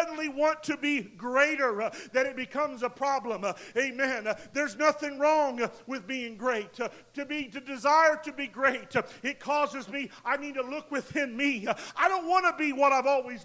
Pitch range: 245-300 Hz